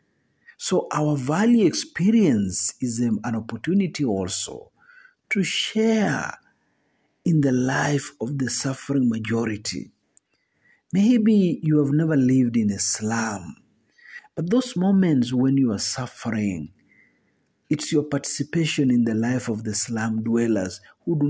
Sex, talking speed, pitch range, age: male, 125 wpm, 120-150 Hz, 50-69